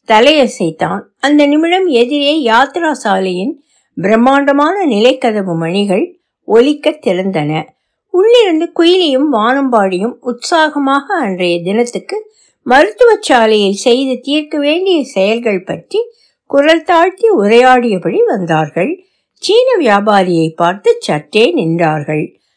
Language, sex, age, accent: Tamil, female, 60-79, native